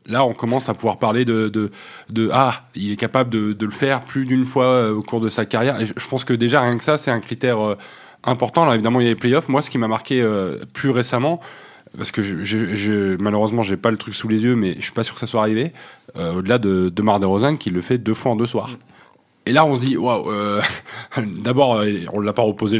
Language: French